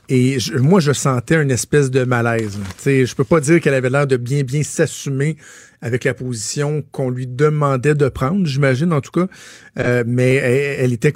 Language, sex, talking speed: French, male, 200 wpm